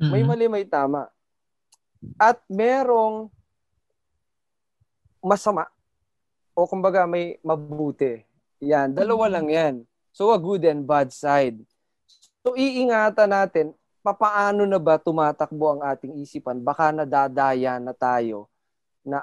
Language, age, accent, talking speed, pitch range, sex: Filipino, 20-39, native, 110 wpm, 125-175 Hz, male